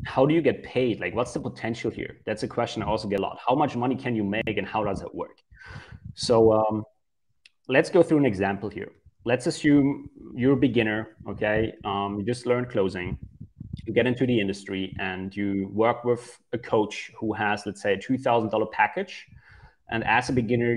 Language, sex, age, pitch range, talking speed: English, male, 30-49, 105-135 Hz, 200 wpm